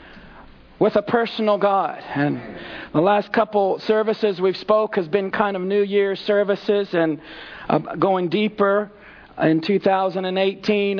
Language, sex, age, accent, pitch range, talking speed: English, male, 40-59, American, 185-230 Hz, 130 wpm